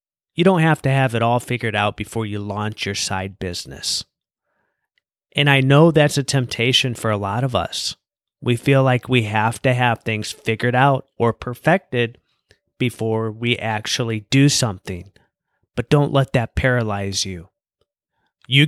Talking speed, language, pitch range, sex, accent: 160 wpm, English, 110-150 Hz, male, American